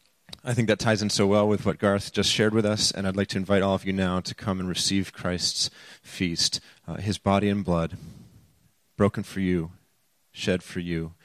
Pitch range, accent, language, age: 85-100 Hz, American, English, 30-49